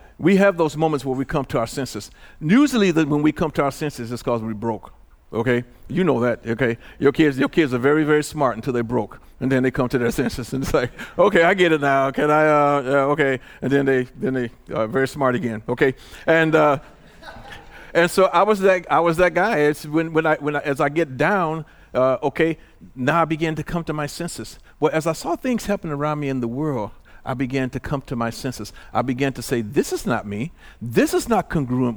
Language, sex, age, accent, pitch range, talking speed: English, male, 50-69, American, 120-155 Hz, 240 wpm